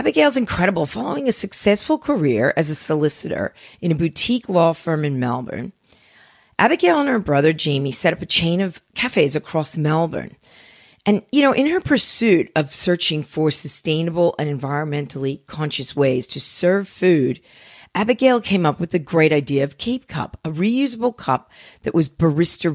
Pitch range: 155-235 Hz